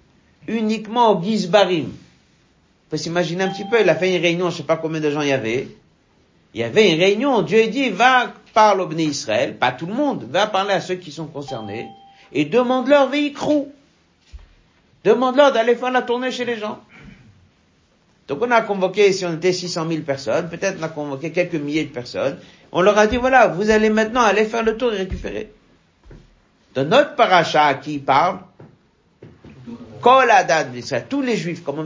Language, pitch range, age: French, 160-215 Hz, 60-79